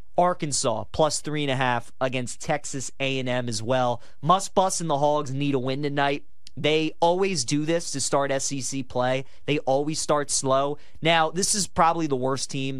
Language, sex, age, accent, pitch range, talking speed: English, male, 30-49, American, 125-155 Hz, 185 wpm